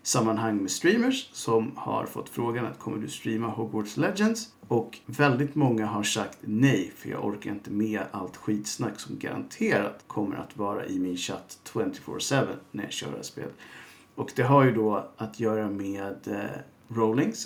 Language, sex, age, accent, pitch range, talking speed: Swedish, male, 50-69, Norwegian, 105-130 Hz, 170 wpm